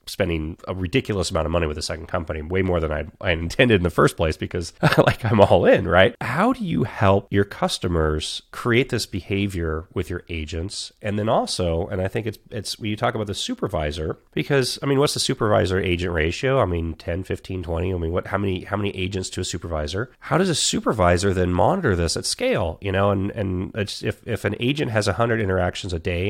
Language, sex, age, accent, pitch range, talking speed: English, male, 30-49, American, 85-110 Hz, 230 wpm